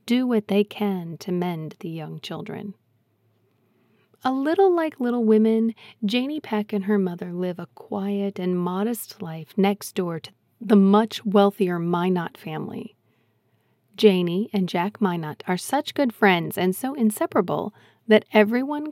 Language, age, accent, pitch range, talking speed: English, 40-59, American, 160-210 Hz, 145 wpm